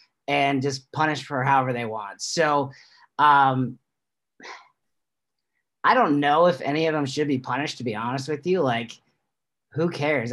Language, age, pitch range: English, 30-49, 130-160 Hz